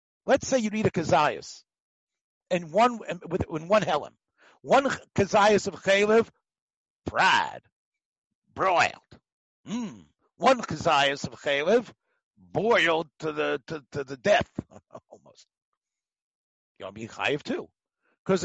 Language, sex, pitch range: English, male, 160-210 Hz